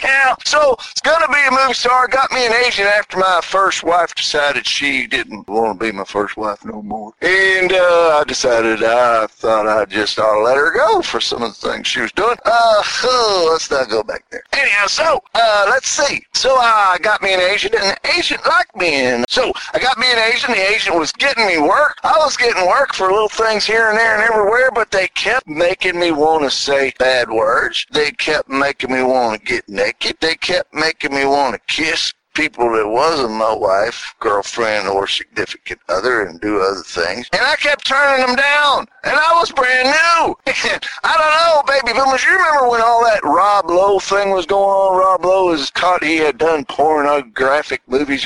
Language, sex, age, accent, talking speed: English, male, 50-69, American, 210 wpm